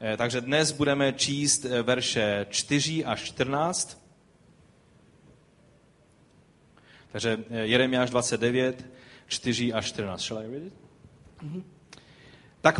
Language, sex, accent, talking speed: Czech, male, native, 70 wpm